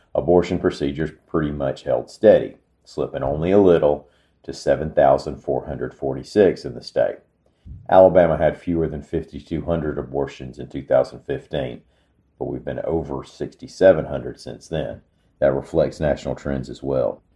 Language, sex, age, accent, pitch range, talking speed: English, male, 40-59, American, 70-85 Hz, 125 wpm